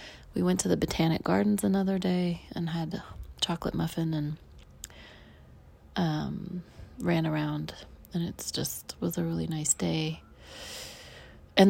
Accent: American